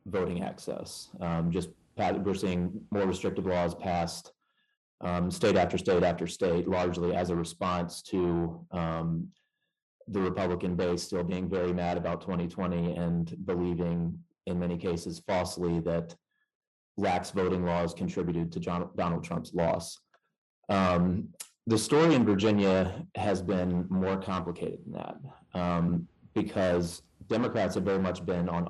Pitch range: 85-95 Hz